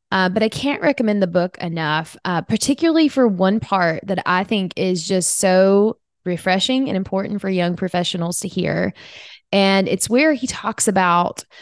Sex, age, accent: female, 20-39, American